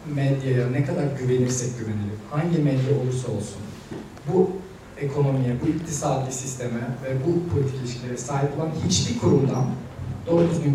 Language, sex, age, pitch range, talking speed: Turkish, male, 40-59, 125-150 Hz, 135 wpm